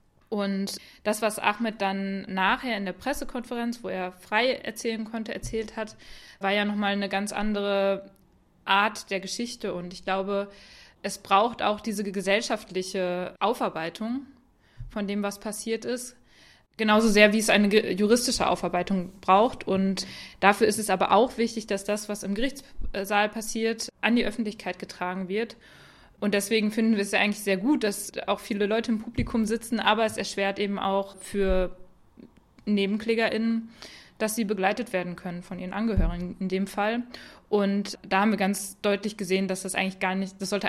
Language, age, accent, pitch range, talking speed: German, 20-39, German, 190-220 Hz, 165 wpm